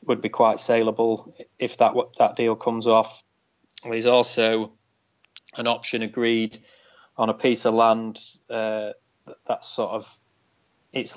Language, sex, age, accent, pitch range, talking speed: English, male, 20-39, British, 105-115 Hz, 135 wpm